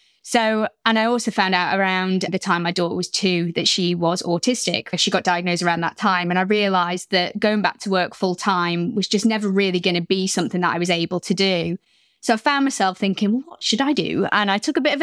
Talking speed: 250 wpm